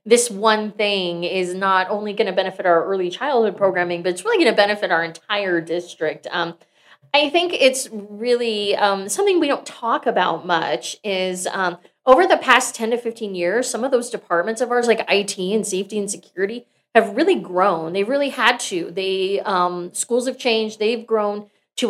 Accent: American